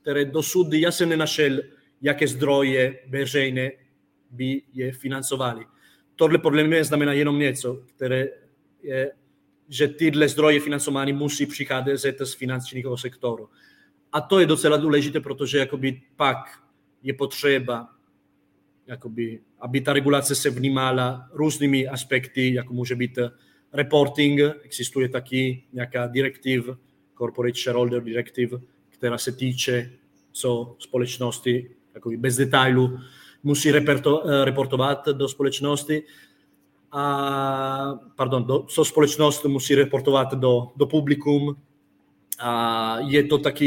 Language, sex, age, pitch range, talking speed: Czech, male, 30-49, 125-145 Hz, 110 wpm